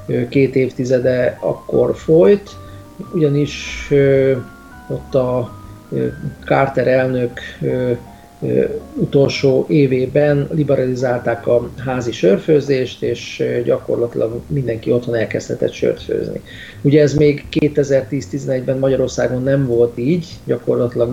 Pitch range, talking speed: 125-145 Hz, 85 wpm